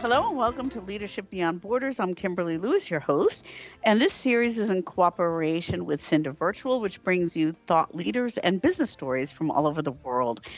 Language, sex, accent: English, female, American